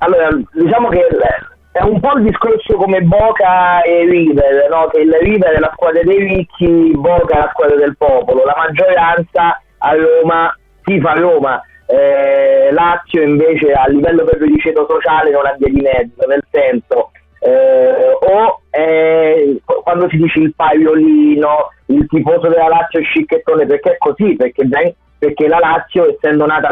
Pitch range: 150-195 Hz